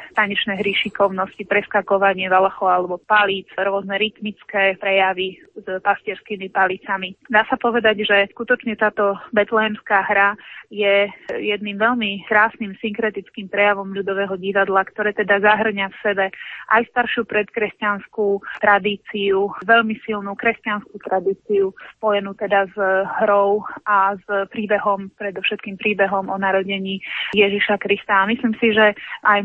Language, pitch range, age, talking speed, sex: Slovak, 195-210 Hz, 20-39, 120 wpm, female